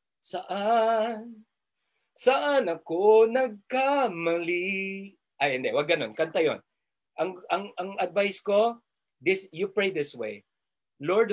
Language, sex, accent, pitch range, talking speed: Filipino, male, native, 140-210 Hz, 105 wpm